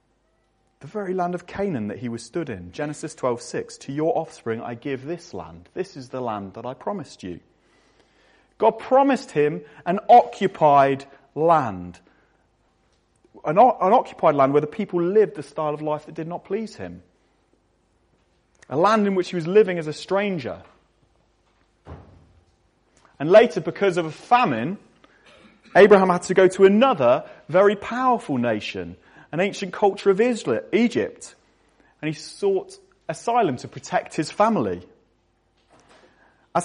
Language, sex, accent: English, male, British